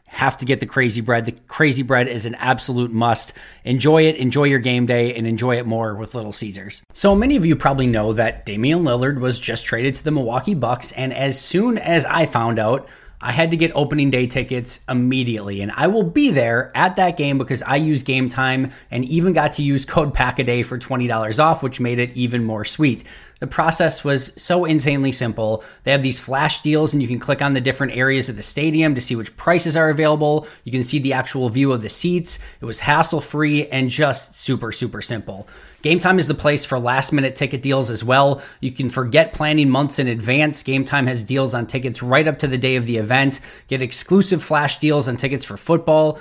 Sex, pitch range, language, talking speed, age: male, 125-150 Hz, English, 225 wpm, 20-39